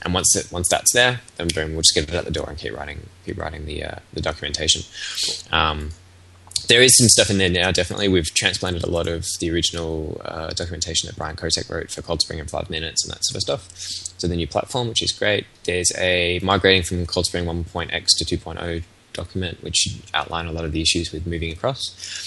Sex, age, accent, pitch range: male, 10-29, Australian, 80-95 Hz